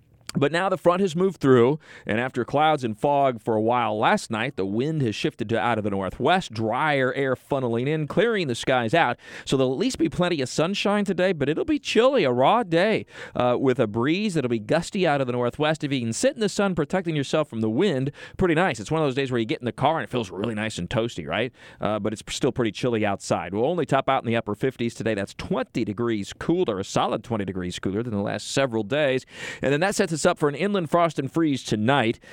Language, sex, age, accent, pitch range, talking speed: English, male, 40-59, American, 110-155 Hz, 255 wpm